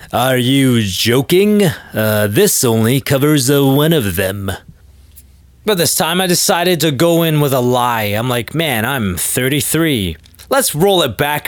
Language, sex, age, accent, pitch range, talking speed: English, male, 30-49, American, 100-145 Hz, 155 wpm